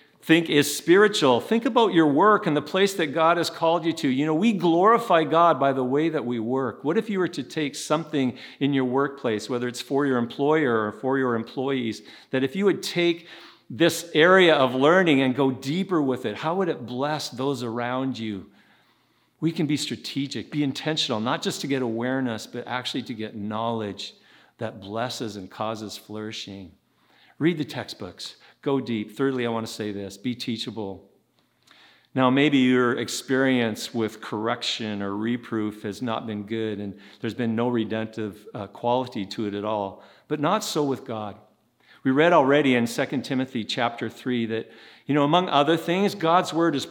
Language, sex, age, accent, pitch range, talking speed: English, male, 50-69, American, 115-160 Hz, 185 wpm